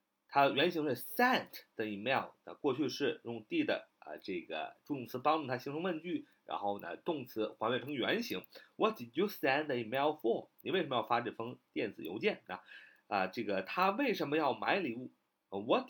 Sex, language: male, Chinese